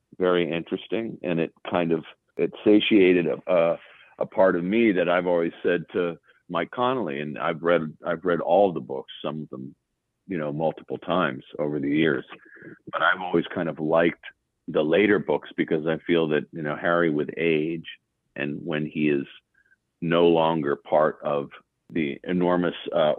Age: 50-69